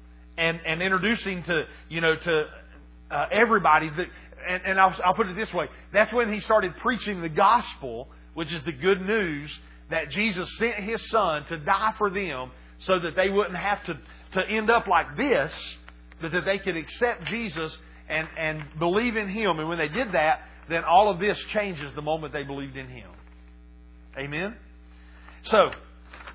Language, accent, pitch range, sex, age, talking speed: English, American, 135-195 Hz, male, 40-59, 180 wpm